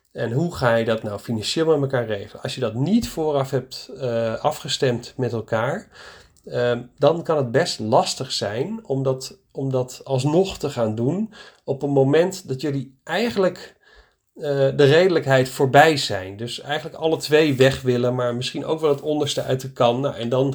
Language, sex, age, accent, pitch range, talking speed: Dutch, male, 40-59, Dutch, 115-145 Hz, 185 wpm